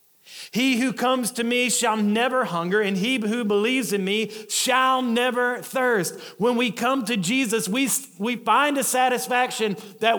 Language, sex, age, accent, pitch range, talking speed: English, male, 40-59, American, 175-250 Hz, 165 wpm